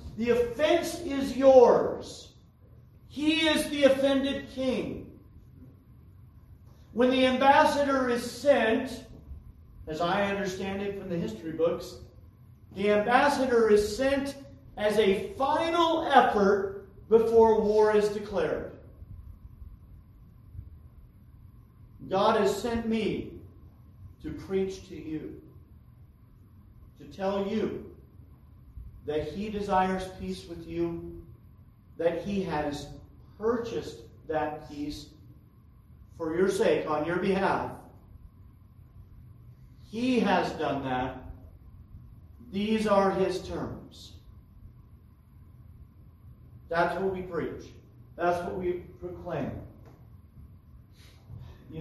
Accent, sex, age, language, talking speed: American, male, 50-69, English, 95 wpm